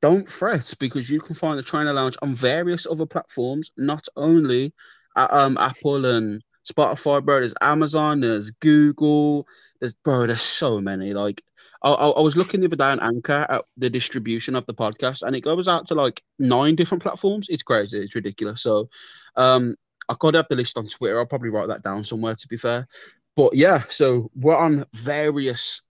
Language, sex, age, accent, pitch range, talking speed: English, male, 20-39, British, 115-160 Hz, 195 wpm